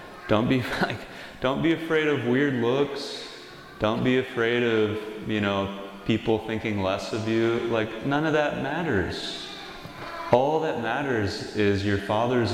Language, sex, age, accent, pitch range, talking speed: English, male, 30-49, American, 95-110 Hz, 150 wpm